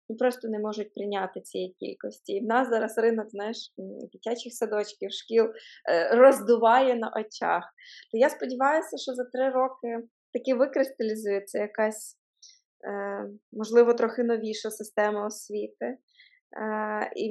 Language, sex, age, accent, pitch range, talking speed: Ukrainian, female, 20-39, native, 220-250 Hz, 115 wpm